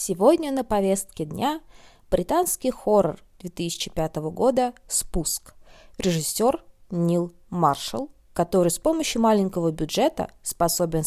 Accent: native